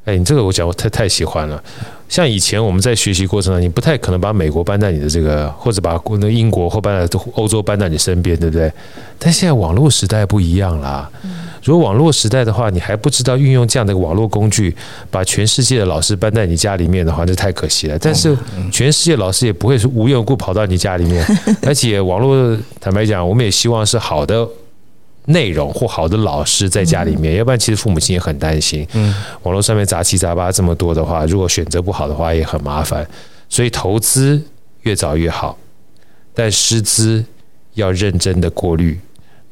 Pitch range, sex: 90-120 Hz, male